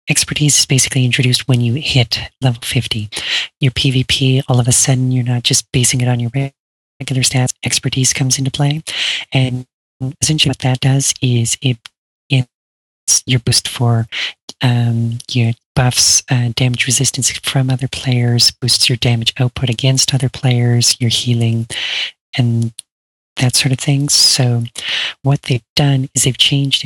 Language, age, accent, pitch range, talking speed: English, 30-49, American, 120-135 Hz, 155 wpm